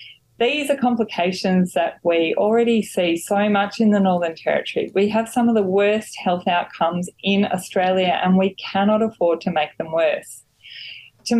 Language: English